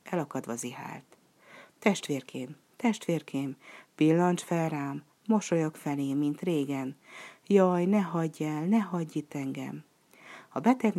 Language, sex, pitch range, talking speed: Hungarian, female, 140-175 Hz, 115 wpm